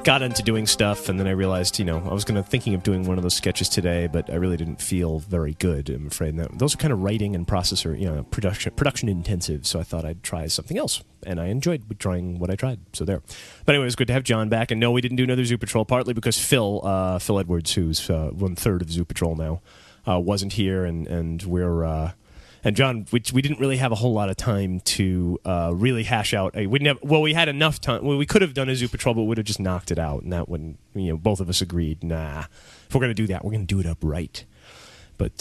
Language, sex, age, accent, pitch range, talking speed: English, male, 30-49, American, 85-115 Hz, 275 wpm